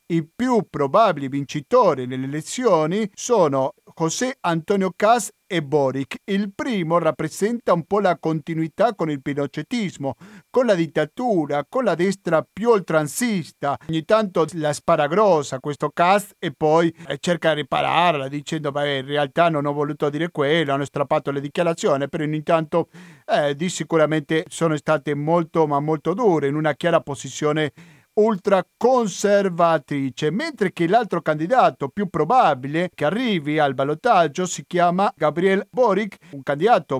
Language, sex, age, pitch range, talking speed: Italian, male, 50-69, 150-195 Hz, 140 wpm